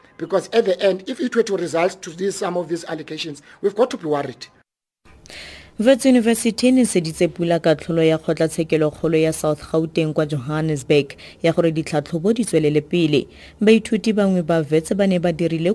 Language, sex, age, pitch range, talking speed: English, female, 30-49, 160-200 Hz, 160 wpm